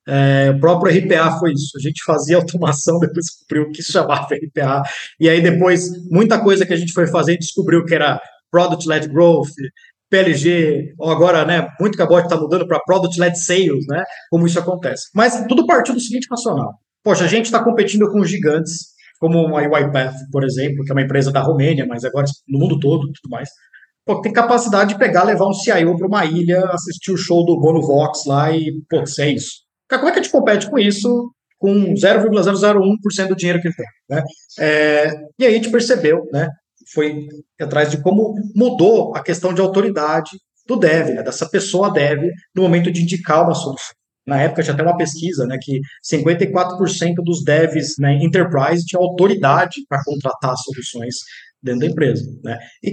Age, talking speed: 20-39, 190 wpm